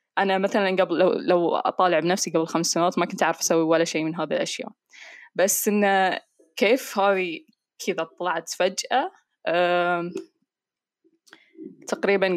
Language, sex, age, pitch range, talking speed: Arabic, female, 10-29, 170-200 Hz, 130 wpm